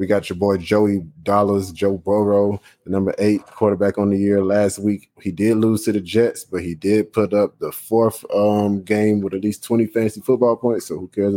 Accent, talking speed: American, 220 wpm